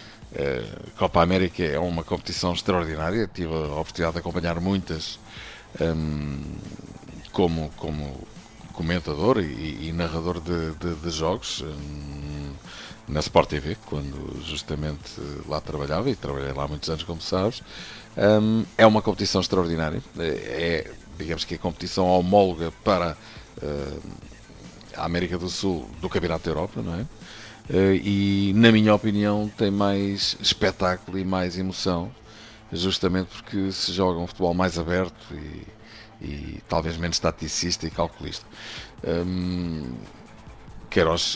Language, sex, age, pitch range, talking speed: Portuguese, male, 50-69, 80-100 Hz, 130 wpm